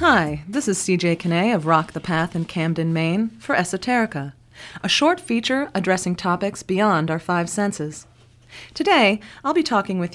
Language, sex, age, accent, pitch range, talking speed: English, female, 30-49, American, 160-230 Hz, 165 wpm